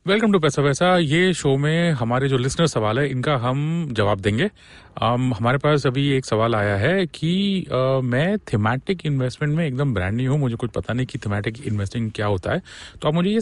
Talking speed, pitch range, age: 215 wpm, 115-170 Hz, 30-49